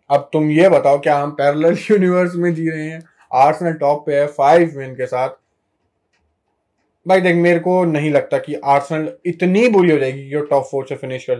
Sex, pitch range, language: male, 140-175 Hz, Hindi